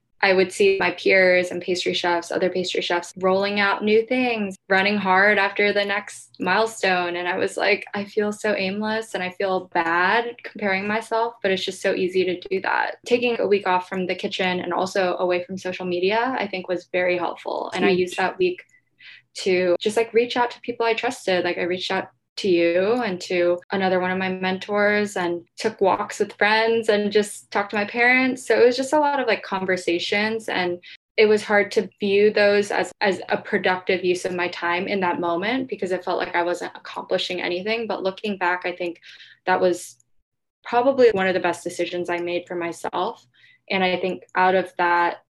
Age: 10-29